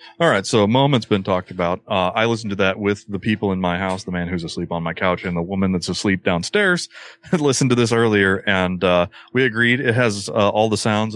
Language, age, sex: English, 30-49, male